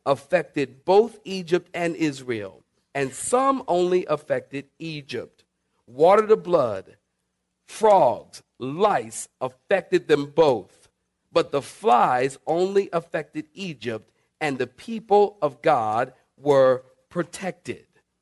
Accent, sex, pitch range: American, male, 135-190 Hz